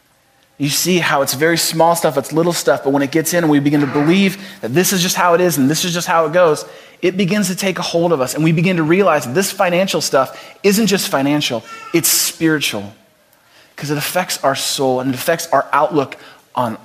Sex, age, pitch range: male, 30-49, 130-185 Hz